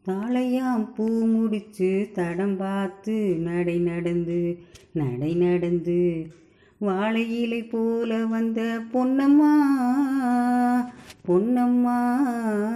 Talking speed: 65 wpm